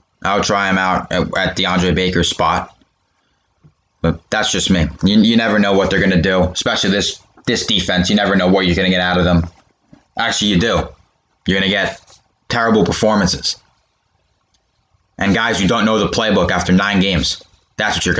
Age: 20-39